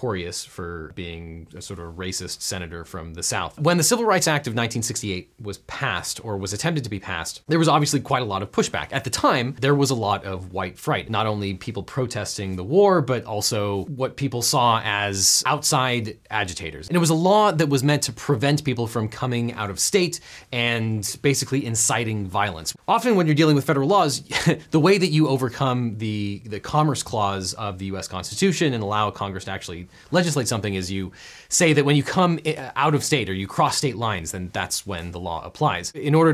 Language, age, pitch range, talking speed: English, 30-49, 100-145 Hz, 210 wpm